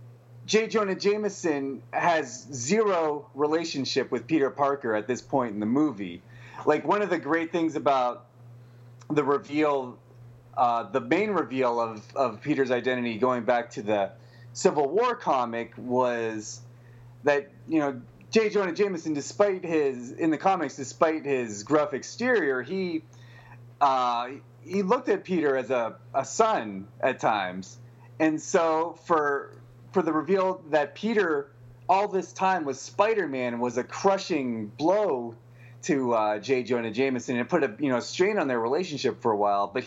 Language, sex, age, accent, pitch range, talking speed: English, male, 30-49, American, 120-170 Hz, 155 wpm